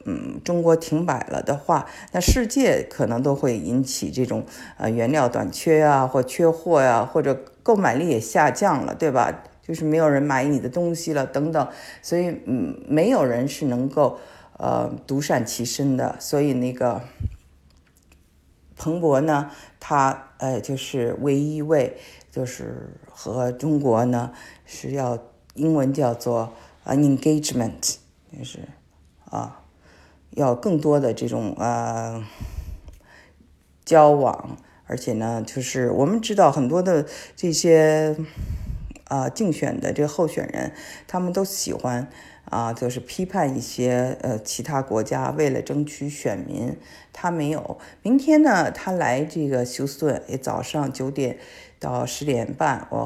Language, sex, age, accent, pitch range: Chinese, female, 50-69, native, 120-155 Hz